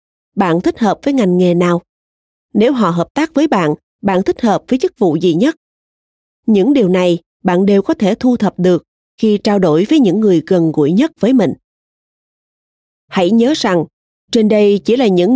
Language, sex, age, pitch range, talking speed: Vietnamese, female, 30-49, 180-240 Hz, 195 wpm